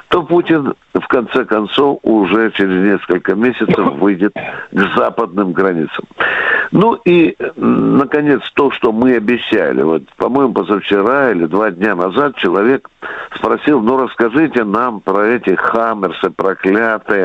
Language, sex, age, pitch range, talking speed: Russian, male, 60-79, 105-150 Hz, 125 wpm